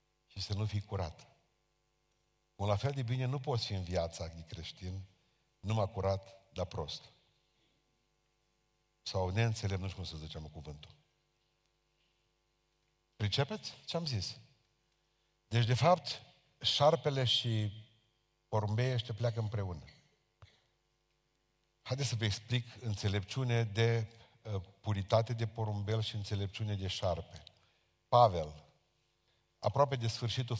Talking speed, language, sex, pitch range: 115 wpm, Romanian, male, 100-125 Hz